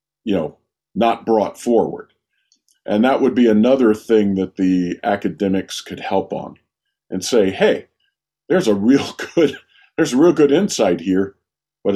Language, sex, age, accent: English, male, 50-69, American